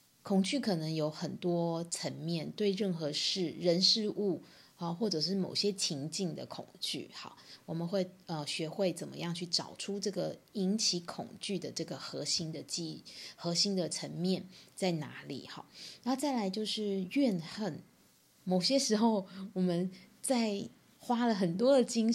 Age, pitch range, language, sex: 20-39, 165-200 Hz, Chinese, female